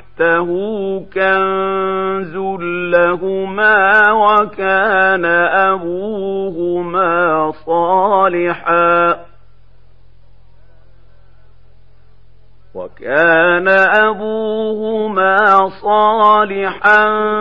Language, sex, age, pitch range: Arabic, male, 50-69, 145-190 Hz